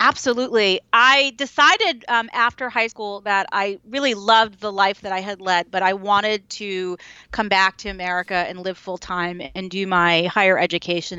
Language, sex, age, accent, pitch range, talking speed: English, female, 30-49, American, 190-230 Hz, 180 wpm